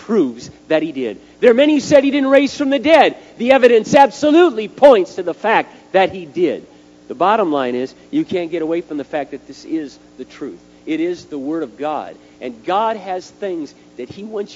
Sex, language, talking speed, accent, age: male, English, 225 wpm, American, 50-69